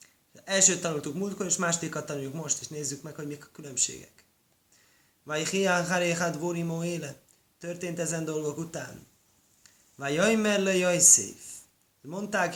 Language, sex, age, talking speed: Hungarian, male, 20-39, 135 wpm